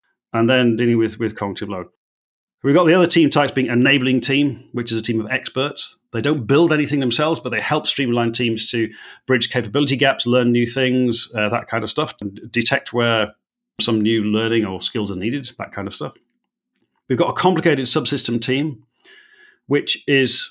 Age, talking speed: 40-59, 195 wpm